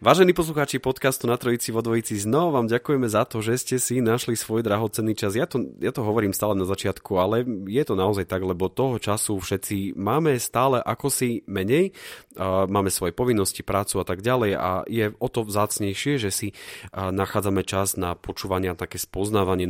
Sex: male